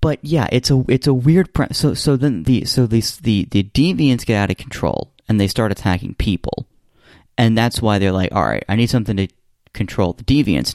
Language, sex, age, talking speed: English, male, 30-49, 225 wpm